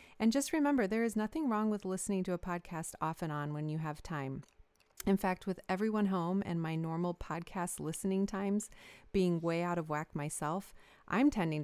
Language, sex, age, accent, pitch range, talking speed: English, female, 30-49, American, 160-195 Hz, 195 wpm